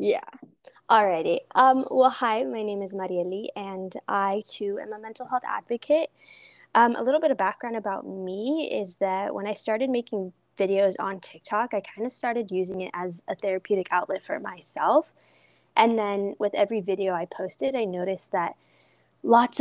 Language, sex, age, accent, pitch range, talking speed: English, female, 10-29, American, 190-235 Hz, 175 wpm